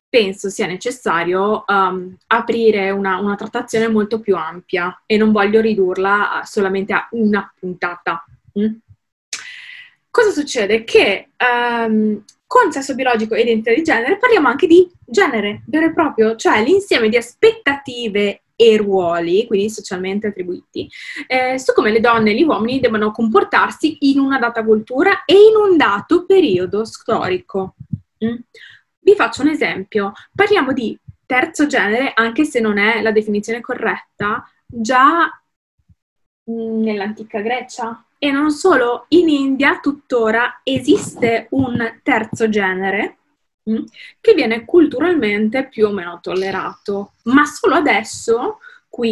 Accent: native